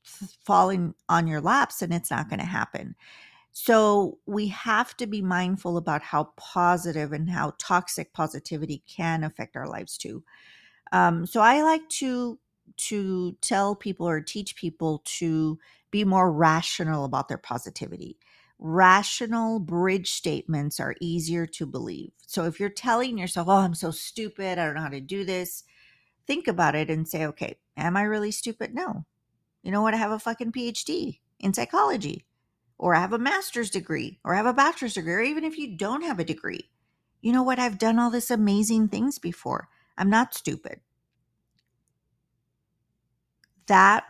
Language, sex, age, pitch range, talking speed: English, female, 40-59, 165-225 Hz, 170 wpm